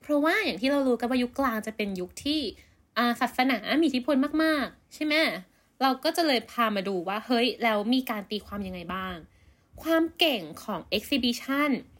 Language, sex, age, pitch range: Thai, female, 20-39, 200-275 Hz